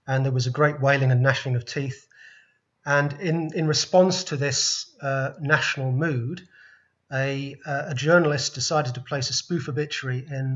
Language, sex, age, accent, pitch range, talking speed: English, male, 30-49, British, 130-150 Hz, 165 wpm